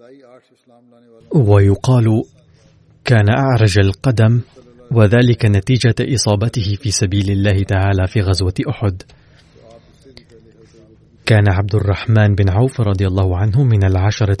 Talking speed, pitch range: 100 wpm, 100-125 Hz